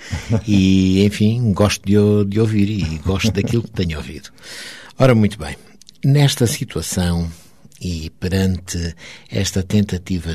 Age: 60-79